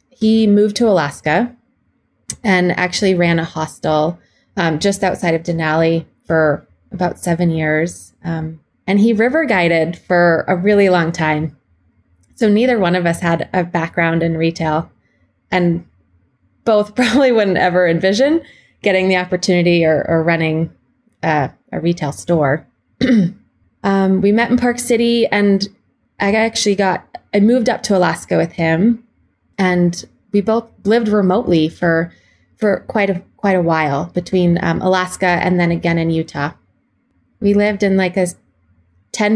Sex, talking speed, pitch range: female, 150 wpm, 165-205 Hz